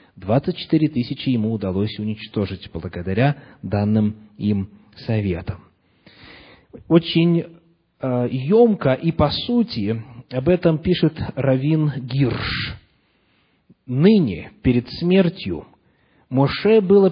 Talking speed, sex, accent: 90 wpm, male, native